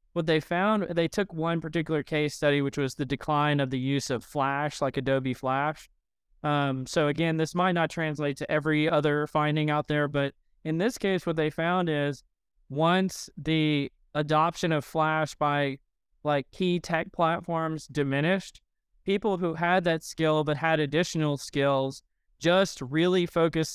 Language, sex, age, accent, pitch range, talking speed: English, male, 20-39, American, 140-165 Hz, 165 wpm